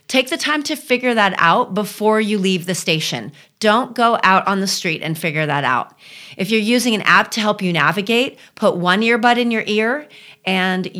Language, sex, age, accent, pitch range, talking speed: English, female, 30-49, American, 170-215 Hz, 205 wpm